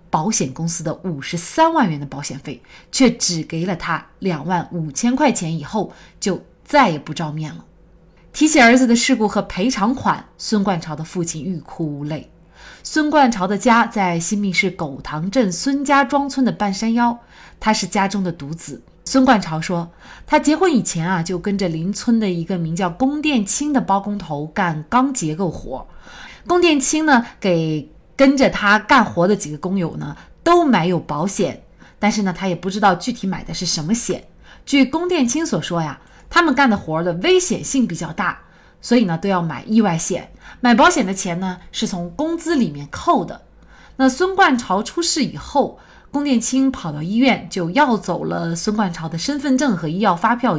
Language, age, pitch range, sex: Chinese, 30-49, 170-255 Hz, female